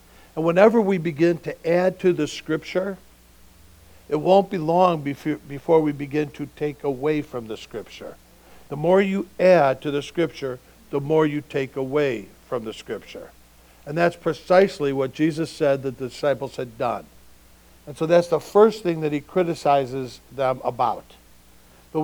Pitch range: 130-170 Hz